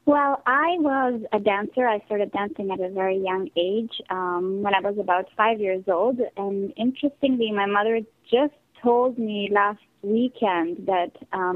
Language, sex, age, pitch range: English, female, 20-39, 180-225 Hz